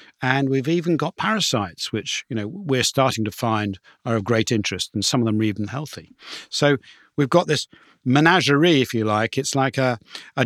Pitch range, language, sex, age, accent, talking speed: 110-140 Hz, English, male, 50-69, British, 200 wpm